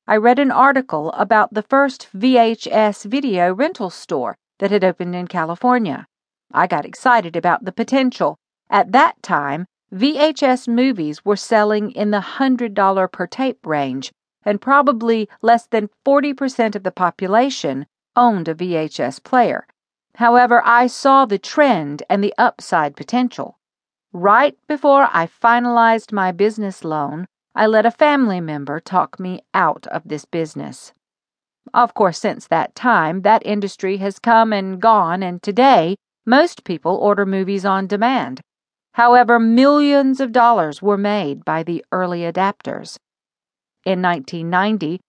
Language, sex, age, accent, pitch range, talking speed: English, female, 50-69, American, 185-240 Hz, 140 wpm